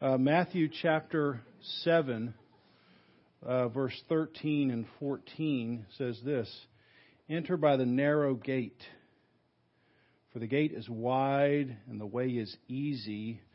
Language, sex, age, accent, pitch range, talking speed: English, male, 50-69, American, 120-150 Hz, 115 wpm